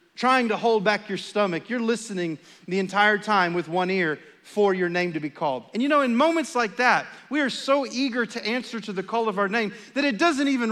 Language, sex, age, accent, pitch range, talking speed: English, male, 40-59, American, 190-270 Hz, 240 wpm